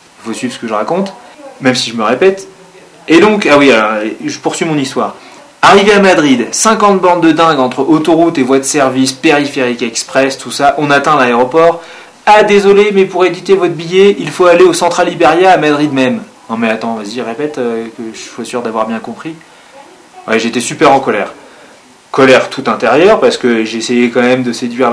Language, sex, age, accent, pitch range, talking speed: French, male, 20-39, French, 125-180 Hz, 200 wpm